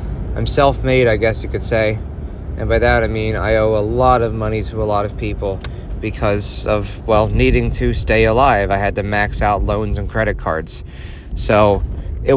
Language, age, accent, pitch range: English, 30-49, American, 85-115 Hz